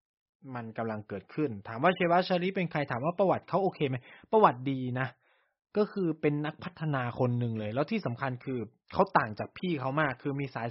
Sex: male